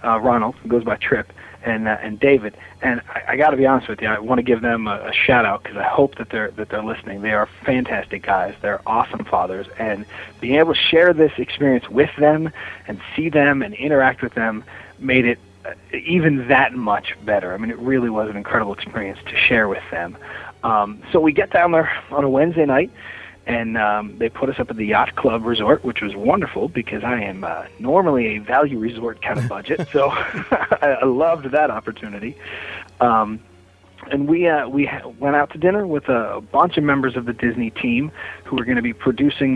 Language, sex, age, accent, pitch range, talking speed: English, male, 30-49, American, 115-145 Hz, 215 wpm